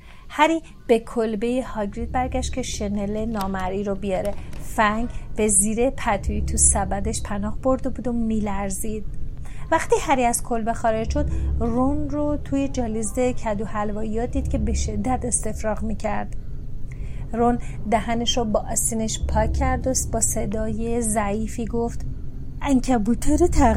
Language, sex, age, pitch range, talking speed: Persian, female, 30-49, 215-280 Hz, 135 wpm